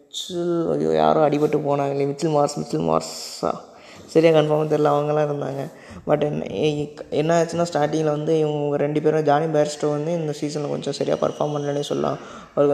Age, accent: 20-39, native